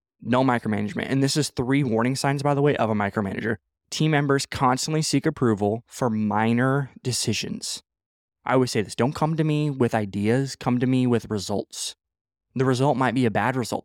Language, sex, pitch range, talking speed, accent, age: English, male, 105-125 Hz, 190 wpm, American, 20-39